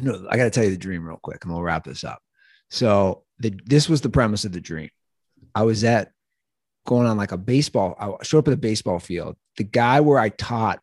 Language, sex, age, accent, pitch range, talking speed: English, male, 30-49, American, 95-130 Hz, 240 wpm